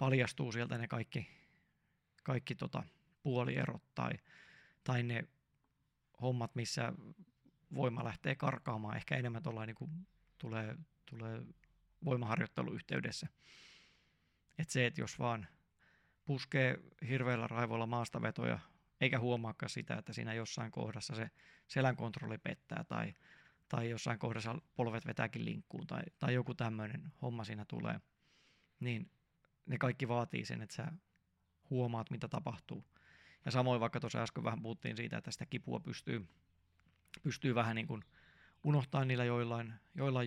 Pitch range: 115-140 Hz